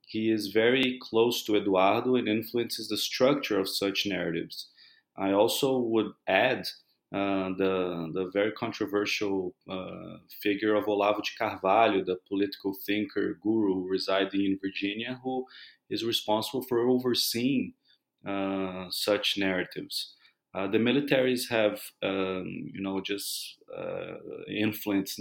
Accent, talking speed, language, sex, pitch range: Brazilian, 125 wpm, English, male, 95-110 Hz